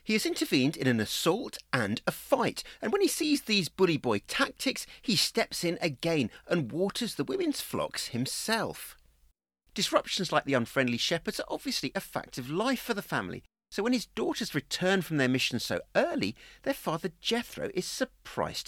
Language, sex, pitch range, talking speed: English, male, 150-250 Hz, 175 wpm